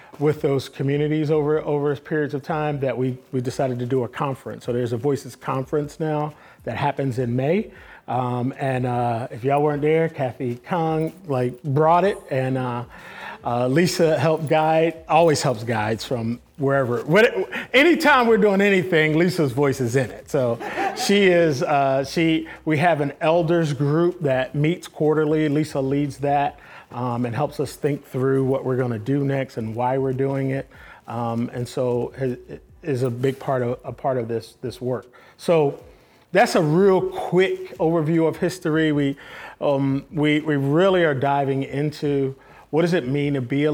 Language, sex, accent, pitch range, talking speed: English, male, American, 130-160 Hz, 175 wpm